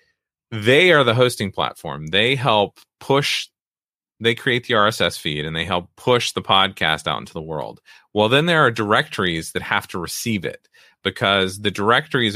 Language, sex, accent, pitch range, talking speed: English, male, American, 85-110 Hz, 175 wpm